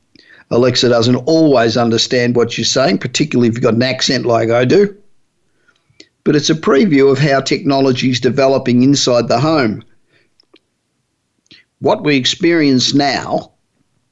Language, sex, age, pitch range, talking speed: English, male, 50-69, 120-145 Hz, 135 wpm